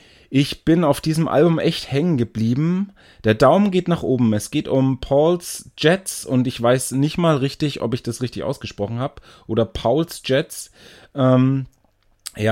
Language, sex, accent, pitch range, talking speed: German, male, German, 120-155 Hz, 170 wpm